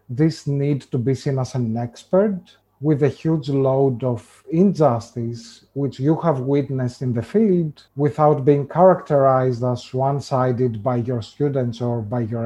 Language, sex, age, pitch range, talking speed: English, male, 40-59, 125-145 Hz, 155 wpm